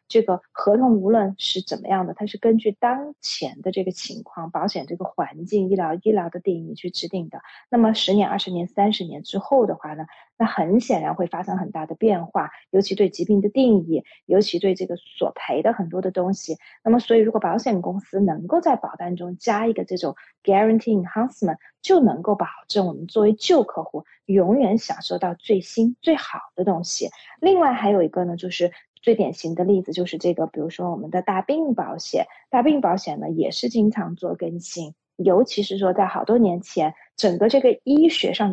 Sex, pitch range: female, 185-235 Hz